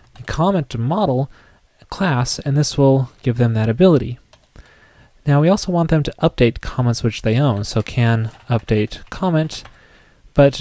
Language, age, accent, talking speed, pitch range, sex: English, 20-39, American, 145 wpm, 115-140 Hz, male